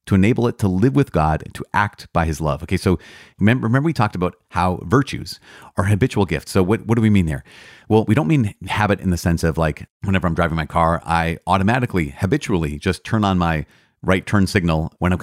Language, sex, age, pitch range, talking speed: English, male, 30-49, 85-110 Hz, 225 wpm